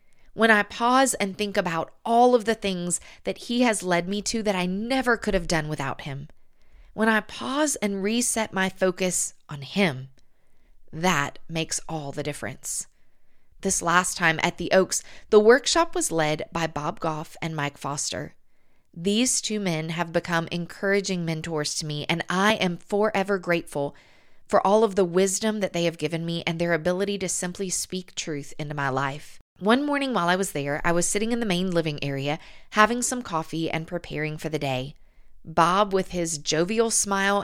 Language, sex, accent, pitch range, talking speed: English, female, American, 160-205 Hz, 185 wpm